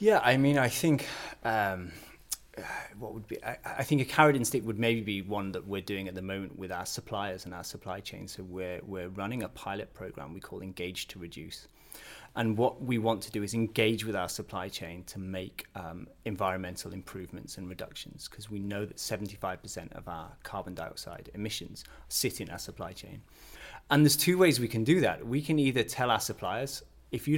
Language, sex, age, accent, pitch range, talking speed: English, male, 30-49, British, 95-120 Hz, 210 wpm